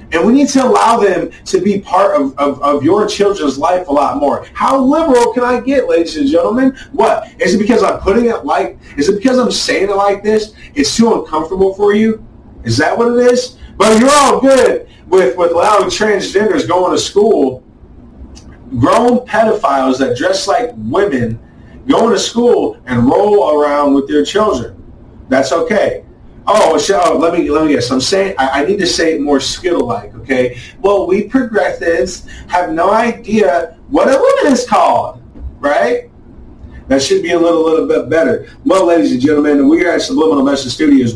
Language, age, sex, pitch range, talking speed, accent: English, 30-49, male, 145-245 Hz, 185 wpm, American